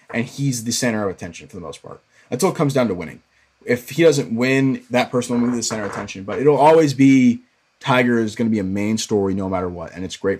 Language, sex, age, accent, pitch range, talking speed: English, male, 30-49, American, 100-135 Hz, 265 wpm